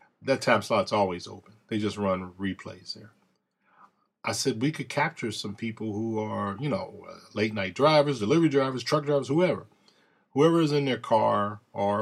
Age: 40-59